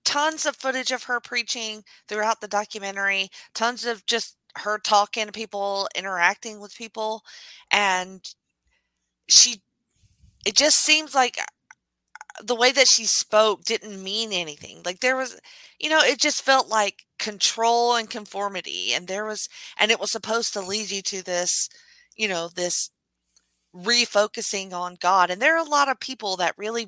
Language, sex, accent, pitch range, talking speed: English, female, American, 185-230 Hz, 160 wpm